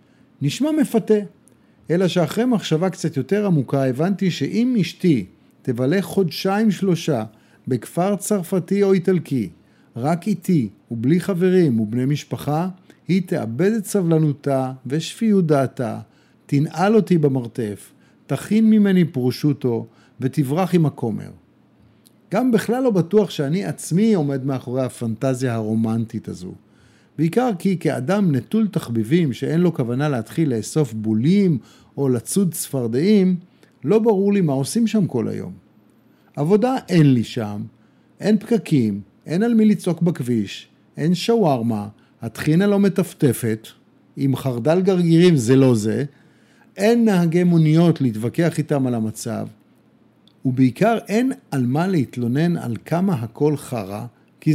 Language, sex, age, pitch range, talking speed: Hebrew, male, 50-69, 130-190 Hz, 120 wpm